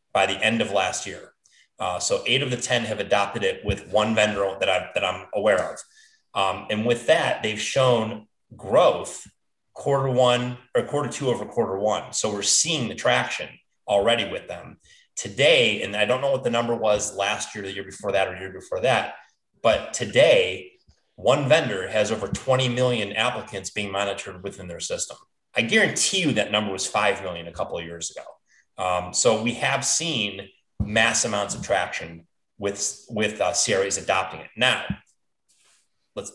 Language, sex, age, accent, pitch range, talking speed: English, male, 30-49, American, 100-130 Hz, 180 wpm